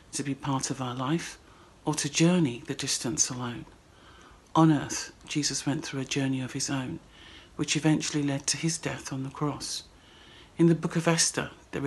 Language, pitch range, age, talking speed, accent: English, 140-155 Hz, 50-69, 185 wpm, British